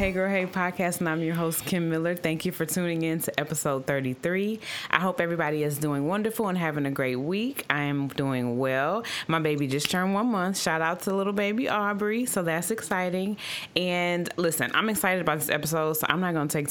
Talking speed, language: 220 wpm, English